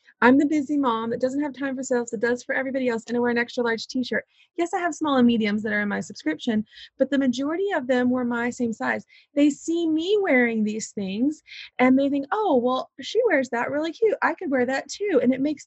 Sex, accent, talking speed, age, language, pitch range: female, American, 255 wpm, 30-49, English, 230-310 Hz